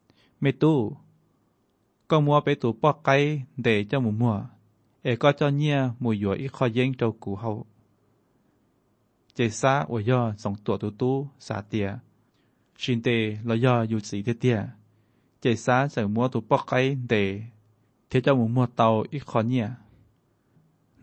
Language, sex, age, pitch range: Thai, male, 20-39, 110-130 Hz